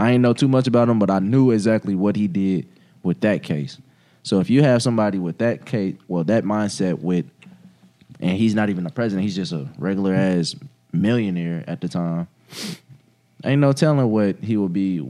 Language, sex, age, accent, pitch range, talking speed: English, male, 20-39, American, 95-125 Hz, 200 wpm